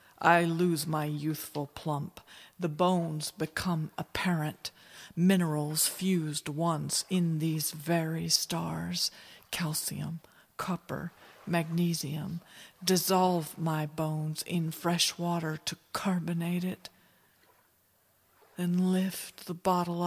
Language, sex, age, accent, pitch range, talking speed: English, female, 50-69, American, 160-180 Hz, 95 wpm